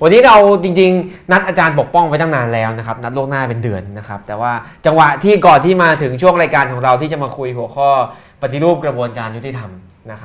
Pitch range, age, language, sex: 125-150 Hz, 20-39, Thai, male